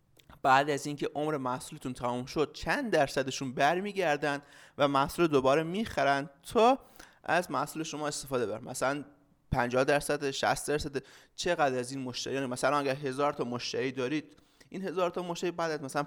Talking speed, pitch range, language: 155 wpm, 125-150 Hz, Persian